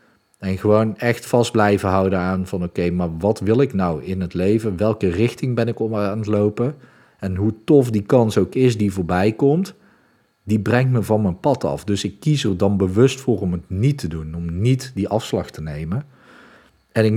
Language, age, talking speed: Dutch, 40-59, 215 wpm